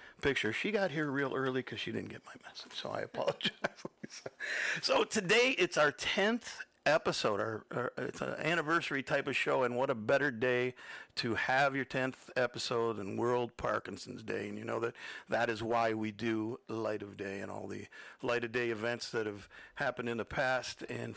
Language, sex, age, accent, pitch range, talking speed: English, male, 50-69, American, 110-145 Hz, 195 wpm